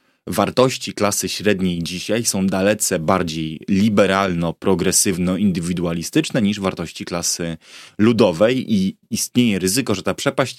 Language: Polish